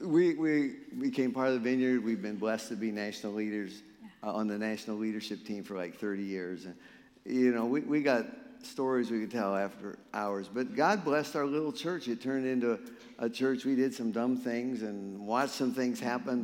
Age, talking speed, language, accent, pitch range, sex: 50-69, 210 wpm, English, American, 110-140 Hz, male